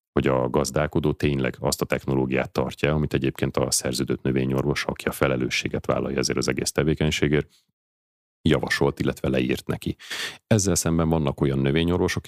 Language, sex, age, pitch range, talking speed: Hungarian, male, 30-49, 65-75 Hz, 145 wpm